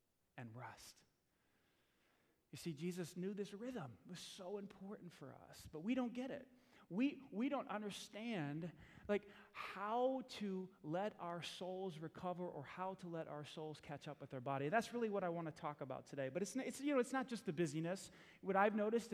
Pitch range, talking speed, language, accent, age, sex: 170-215 Hz, 200 wpm, English, American, 30-49, male